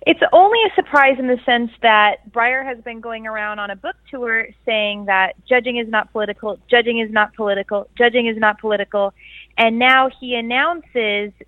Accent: American